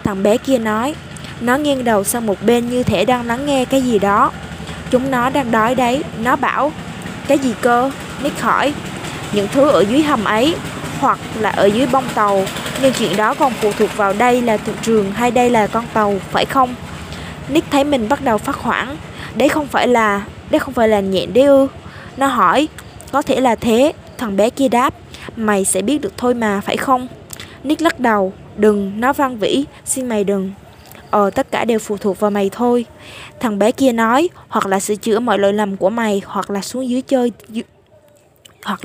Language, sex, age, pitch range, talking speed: Vietnamese, female, 20-39, 210-265 Hz, 210 wpm